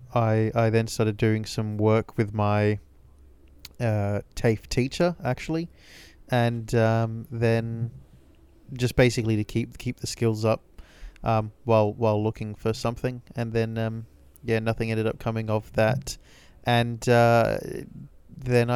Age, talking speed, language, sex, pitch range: 20-39, 140 wpm, English, male, 110-125 Hz